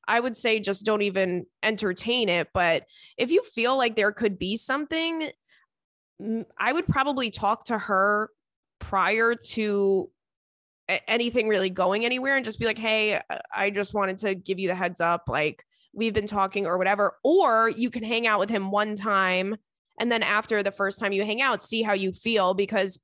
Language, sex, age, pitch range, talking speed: English, female, 20-39, 195-235 Hz, 190 wpm